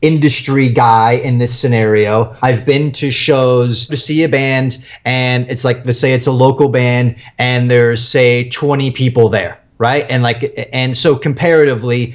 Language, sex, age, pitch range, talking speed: English, male, 30-49, 125-155 Hz, 170 wpm